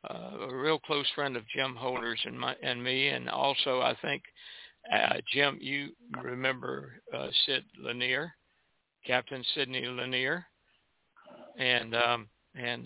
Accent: American